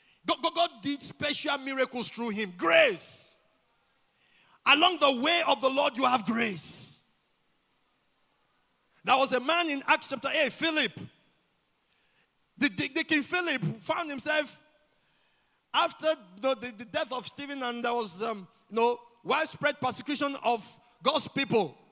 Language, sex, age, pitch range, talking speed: English, male, 50-69, 215-295 Hz, 135 wpm